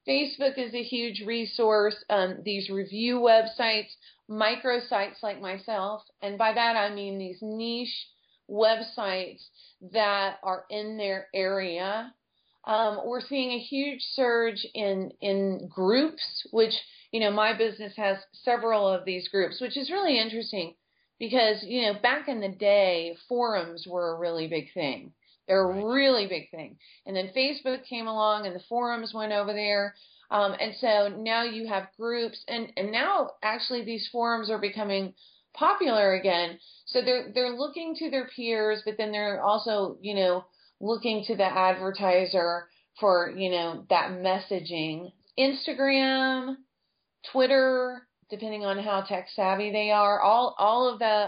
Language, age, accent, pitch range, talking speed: English, 40-59, American, 195-240 Hz, 150 wpm